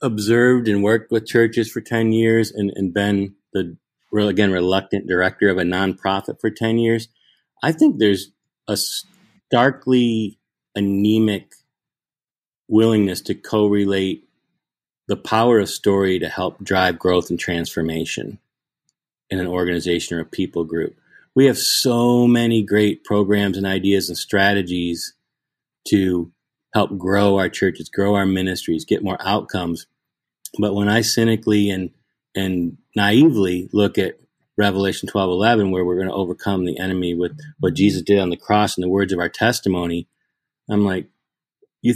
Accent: American